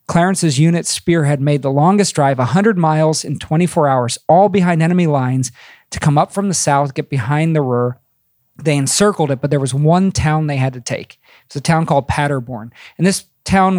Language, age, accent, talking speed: English, 40-59, American, 200 wpm